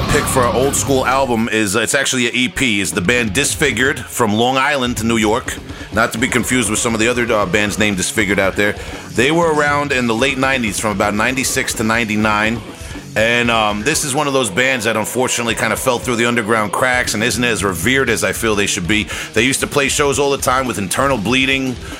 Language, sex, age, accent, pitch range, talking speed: English, male, 30-49, American, 110-130 Hz, 235 wpm